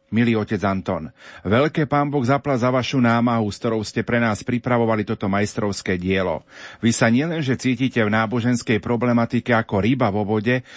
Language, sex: Slovak, male